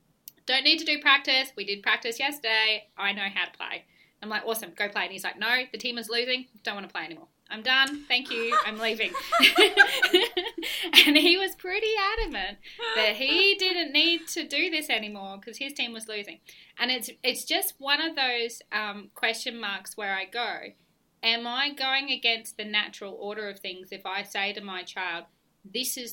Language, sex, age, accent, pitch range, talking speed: English, female, 20-39, Australian, 195-270 Hz, 200 wpm